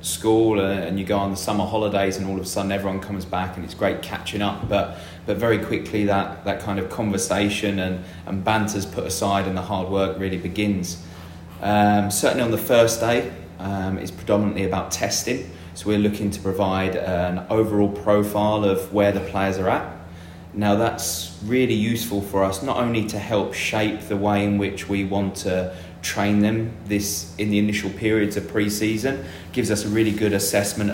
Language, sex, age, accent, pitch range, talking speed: English, male, 20-39, British, 95-105 Hz, 190 wpm